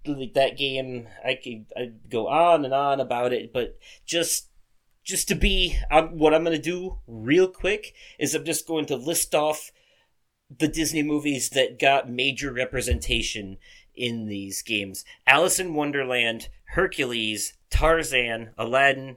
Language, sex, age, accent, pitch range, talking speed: English, male, 30-49, American, 115-155 Hz, 140 wpm